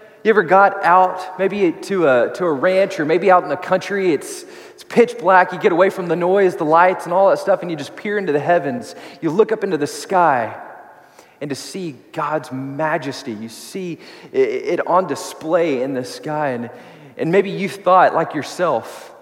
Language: English